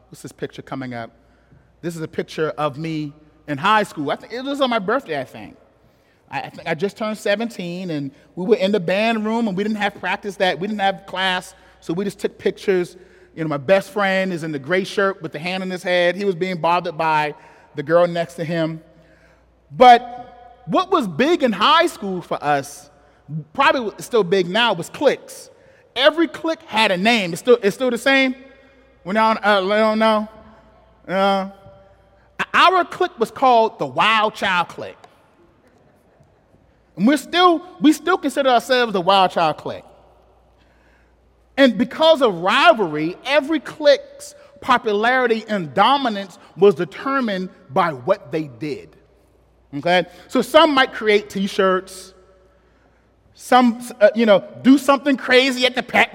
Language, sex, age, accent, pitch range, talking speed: English, male, 30-49, American, 175-250 Hz, 170 wpm